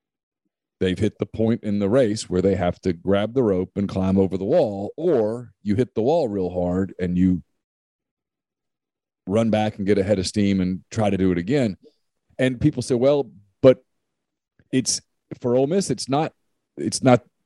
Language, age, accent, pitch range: English, 40-59, American, 95-130 Hz